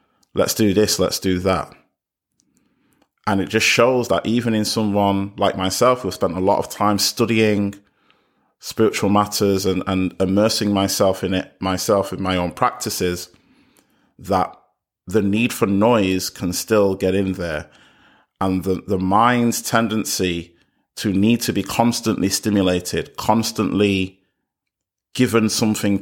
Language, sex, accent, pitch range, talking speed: English, male, British, 95-110 Hz, 140 wpm